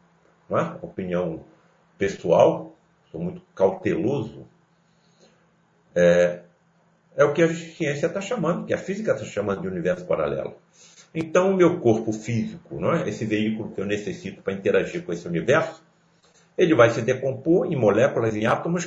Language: Portuguese